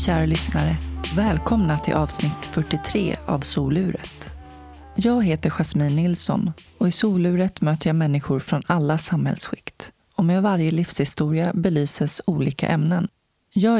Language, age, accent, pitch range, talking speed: Swedish, 30-49, native, 140-180 Hz, 125 wpm